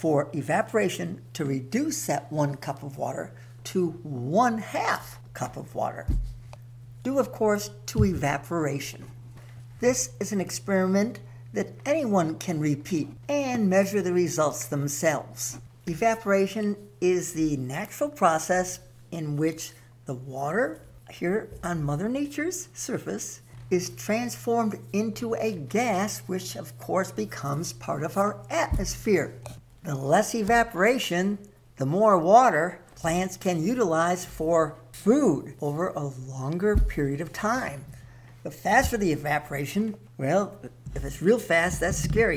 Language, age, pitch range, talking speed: English, 60-79, 135-200 Hz, 125 wpm